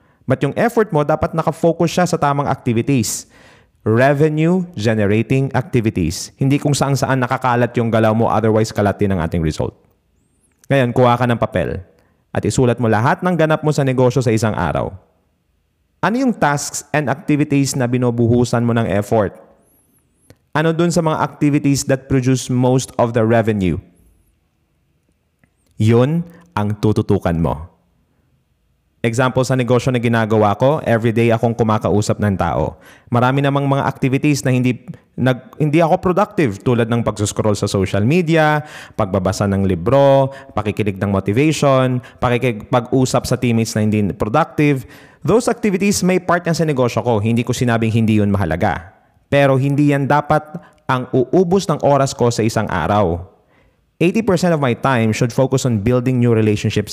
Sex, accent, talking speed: male, native, 150 wpm